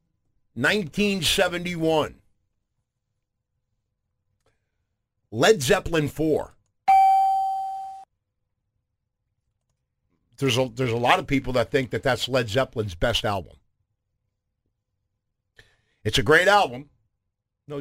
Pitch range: 100-125 Hz